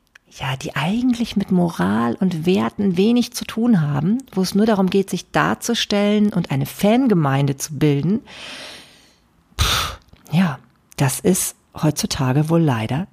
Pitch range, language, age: 155-200 Hz, German, 40-59